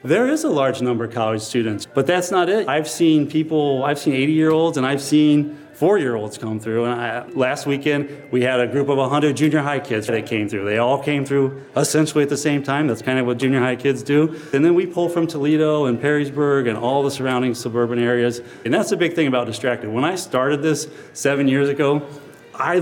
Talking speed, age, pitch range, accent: 225 wpm, 30-49, 125-150 Hz, American